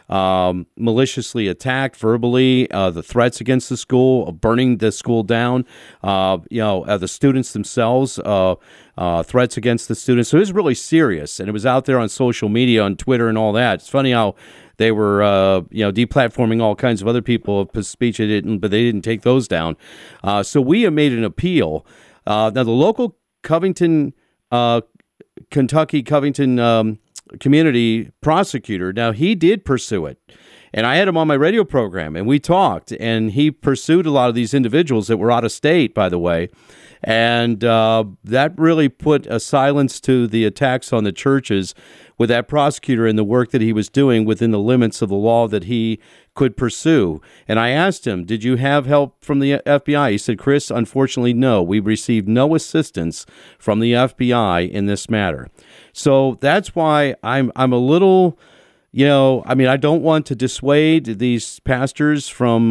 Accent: American